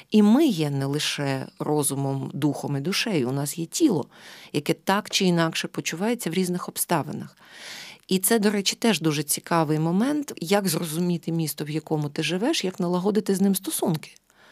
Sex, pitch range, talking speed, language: female, 155-205 Hz, 170 wpm, Ukrainian